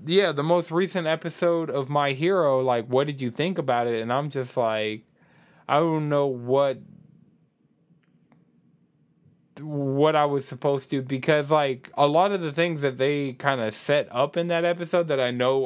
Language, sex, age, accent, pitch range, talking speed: English, male, 20-39, American, 125-170 Hz, 180 wpm